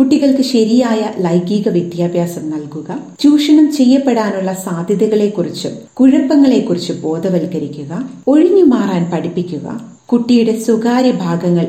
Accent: native